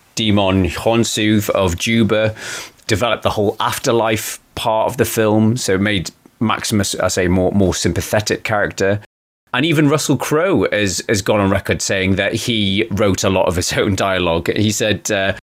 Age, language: 30-49, English